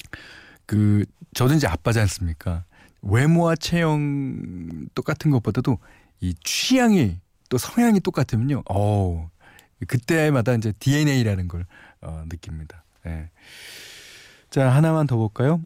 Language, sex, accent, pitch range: Korean, male, native, 95-150 Hz